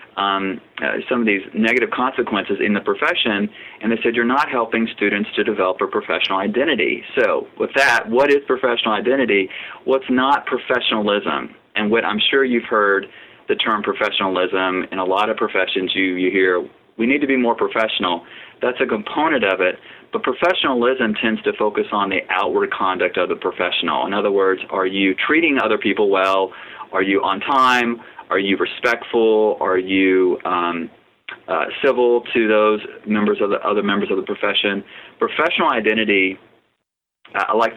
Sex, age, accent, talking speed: male, 30-49, American, 170 wpm